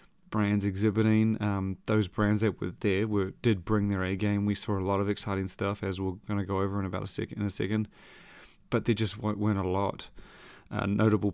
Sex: male